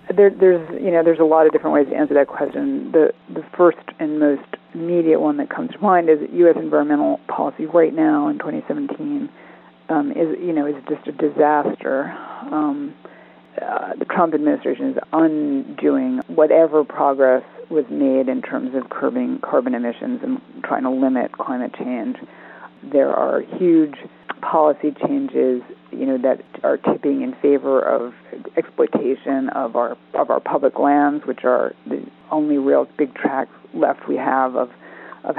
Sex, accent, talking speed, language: female, American, 165 wpm, English